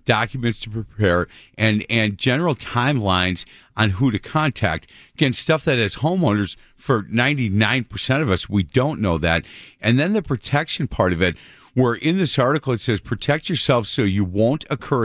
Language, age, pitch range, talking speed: English, 50-69, 105-145 Hz, 170 wpm